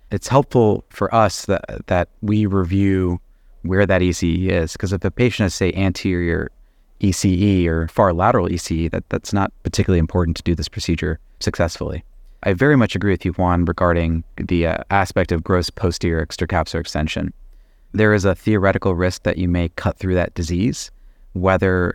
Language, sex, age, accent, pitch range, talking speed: English, male, 30-49, American, 85-100 Hz, 170 wpm